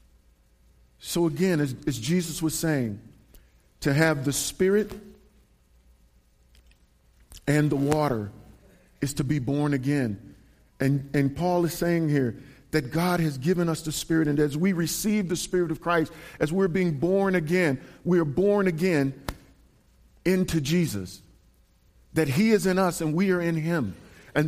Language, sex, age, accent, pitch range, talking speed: English, male, 50-69, American, 135-180 Hz, 150 wpm